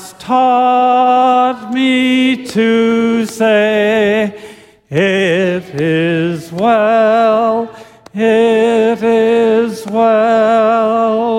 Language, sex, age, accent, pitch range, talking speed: English, male, 50-69, American, 175-230 Hz, 55 wpm